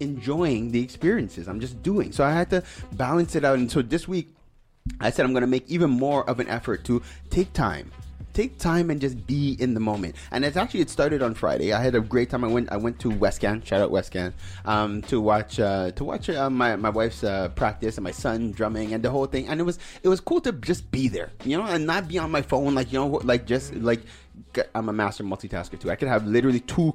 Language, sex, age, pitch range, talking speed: English, male, 30-49, 105-135 Hz, 255 wpm